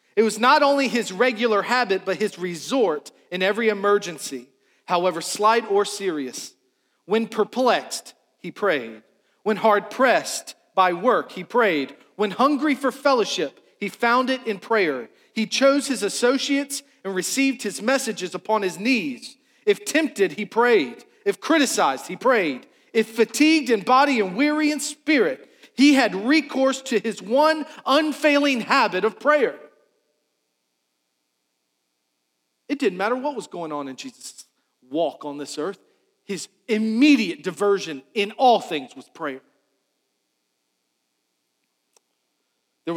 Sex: male